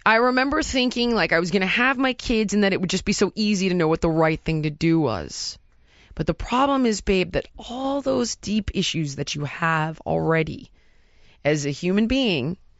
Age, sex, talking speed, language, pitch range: 20-39, female, 215 wpm, English, 175-235 Hz